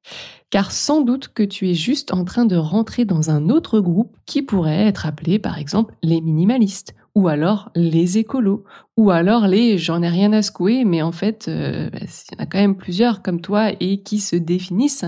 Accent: French